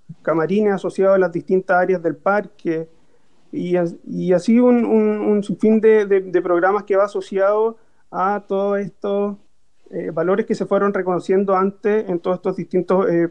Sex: male